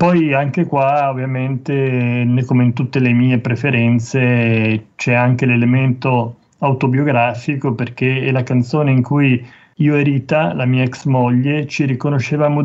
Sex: male